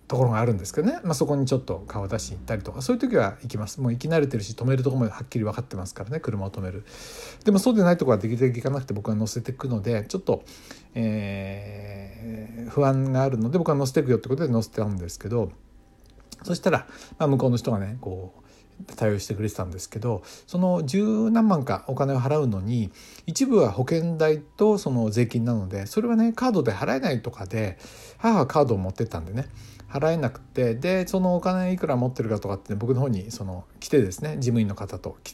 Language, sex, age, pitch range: Japanese, male, 60-79, 110-160 Hz